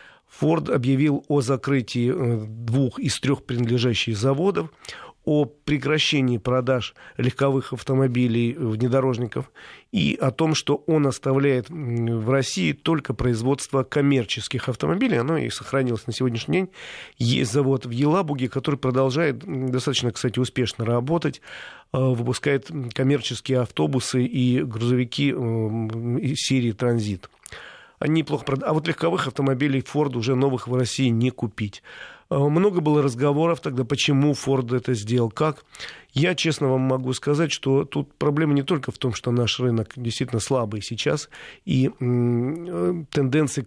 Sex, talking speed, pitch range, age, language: male, 130 wpm, 120-145 Hz, 40-59, Russian